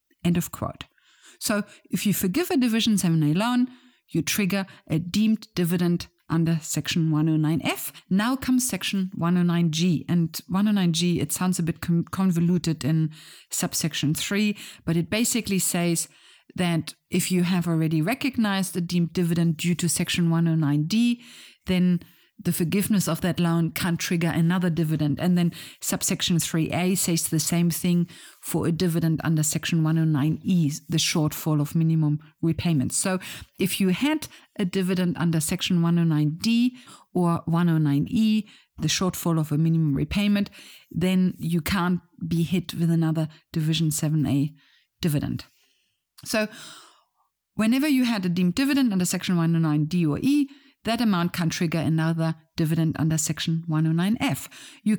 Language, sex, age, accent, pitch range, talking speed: English, female, 50-69, German, 160-195 Hz, 140 wpm